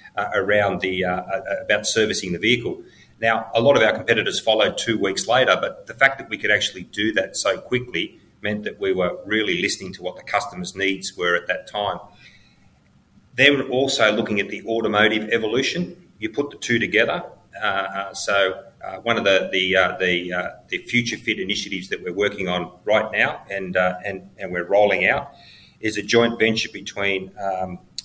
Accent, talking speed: Australian, 195 wpm